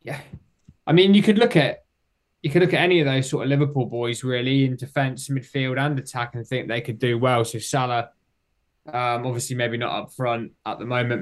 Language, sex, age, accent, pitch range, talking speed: English, male, 20-39, British, 110-130 Hz, 220 wpm